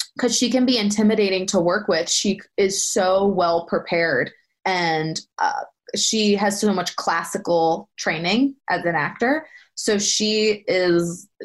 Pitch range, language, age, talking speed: 175-230 Hz, English, 20-39, 140 wpm